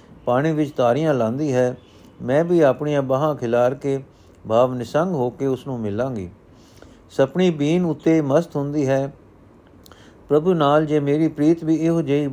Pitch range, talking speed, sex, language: 125-155 Hz, 155 wpm, male, Punjabi